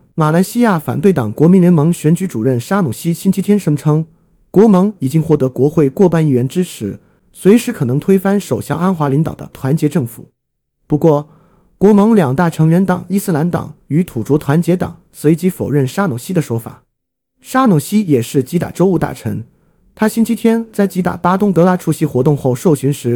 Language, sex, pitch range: Chinese, male, 135-195 Hz